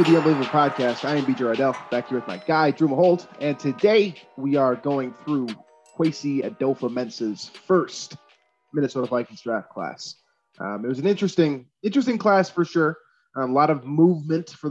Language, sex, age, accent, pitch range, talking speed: English, male, 20-39, American, 130-160 Hz, 175 wpm